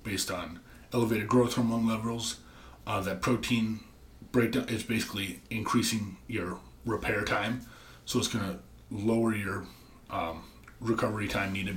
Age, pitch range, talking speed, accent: 30-49, 95-115 Hz, 135 wpm, American